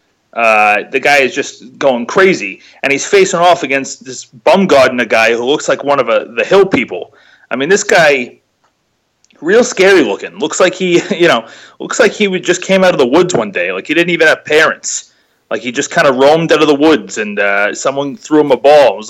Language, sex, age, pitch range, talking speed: English, male, 30-49, 135-175 Hz, 235 wpm